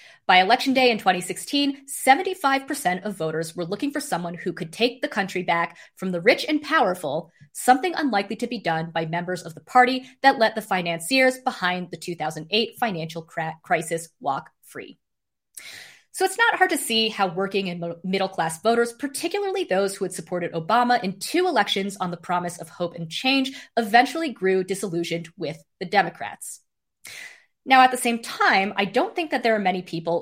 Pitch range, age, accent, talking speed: 175-265 Hz, 20-39, American, 180 wpm